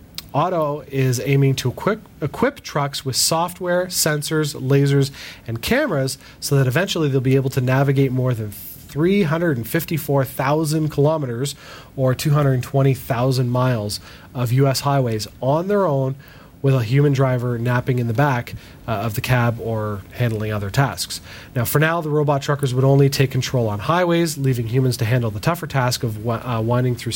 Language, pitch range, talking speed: English, 115-145 Hz, 160 wpm